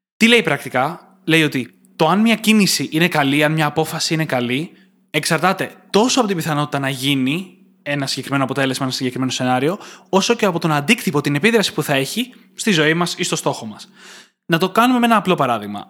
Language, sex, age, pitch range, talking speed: Greek, male, 20-39, 150-200 Hz, 200 wpm